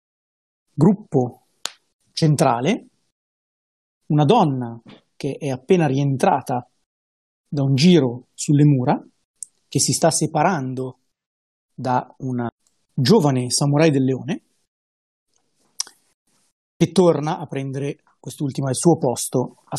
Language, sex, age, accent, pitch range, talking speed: Italian, male, 30-49, native, 130-180 Hz, 95 wpm